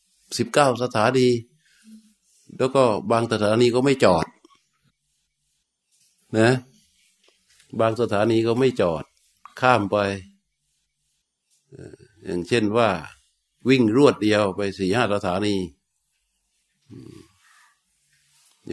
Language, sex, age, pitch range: Thai, male, 60-79, 100-135 Hz